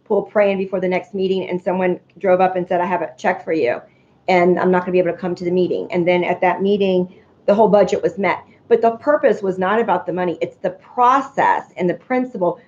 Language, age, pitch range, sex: English, 40-59, 185-235 Hz, female